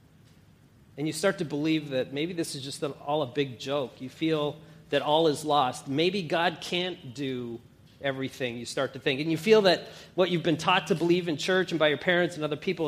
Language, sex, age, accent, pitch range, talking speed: English, male, 40-59, American, 150-190 Hz, 225 wpm